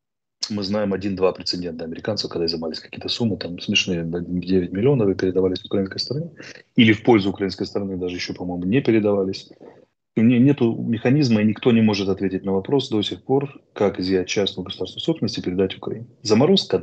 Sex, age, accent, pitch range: male, 30-49, native, 95-115 Hz